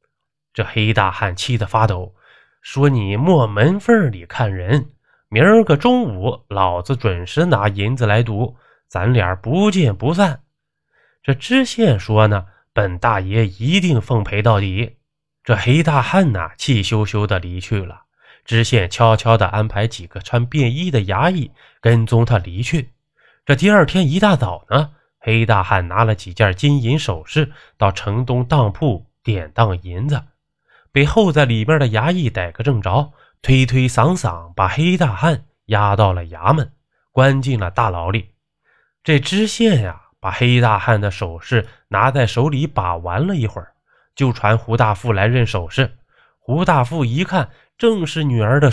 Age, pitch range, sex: 20-39, 105-145 Hz, male